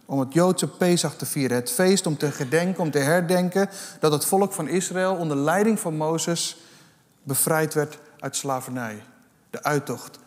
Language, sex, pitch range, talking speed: Dutch, male, 140-175 Hz, 170 wpm